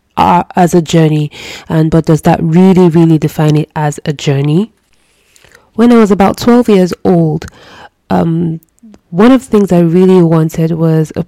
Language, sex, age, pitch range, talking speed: English, female, 20-39, 160-180 Hz, 165 wpm